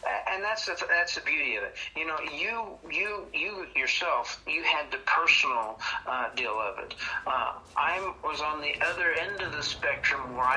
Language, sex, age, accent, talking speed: English, male, 50-69, American, 185 wpm